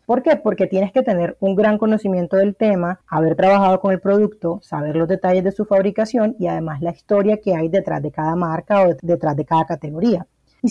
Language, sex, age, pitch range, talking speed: Spanish, female, 30-49, 165-205 Hz, 215 wpm